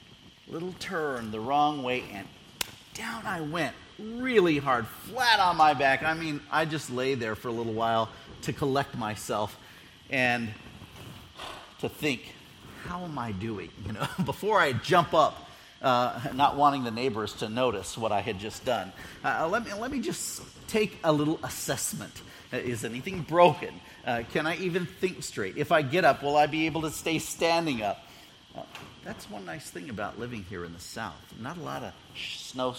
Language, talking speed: English, 185 wpm